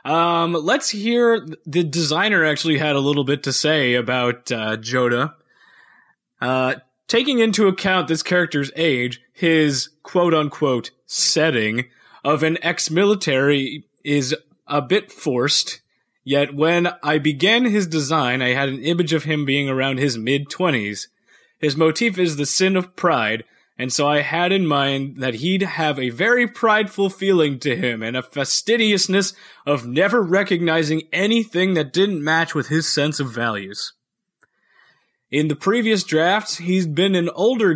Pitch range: 140-185 Hz